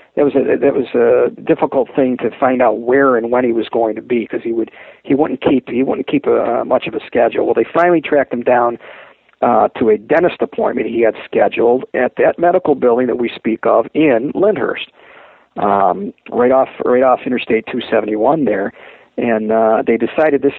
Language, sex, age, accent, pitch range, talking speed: English, male, 50-69, American, 120-150 Hz, 215 wpm